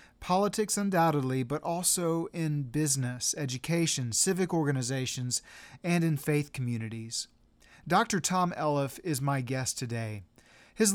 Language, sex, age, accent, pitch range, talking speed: English, male, 40-59, American, 130-170 Hz, 115 wpm